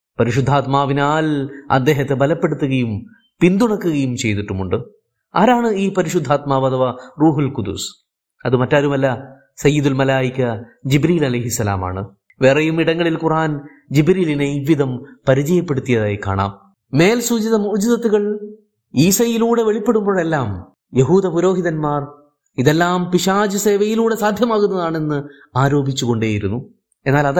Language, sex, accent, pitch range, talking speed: Malayalam, male, native, 130-180 Hz, 75 wpm